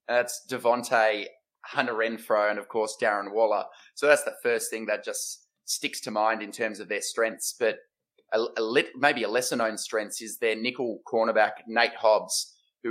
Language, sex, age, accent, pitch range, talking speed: English, male, 20-39, Australian, 110-155 Hz, 180 wpm